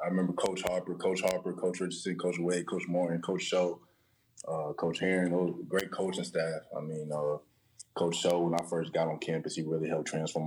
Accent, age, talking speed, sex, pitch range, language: American, 20-39, 200 wpm, male, 80-90 Hz, English